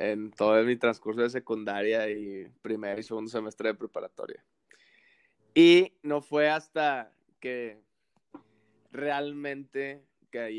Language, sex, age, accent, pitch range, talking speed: Spanish, male, 20-39, Mexican, 110-140 Hz, 115 wpm